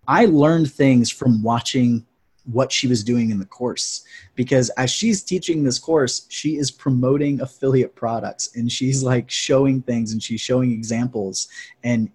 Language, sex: English, male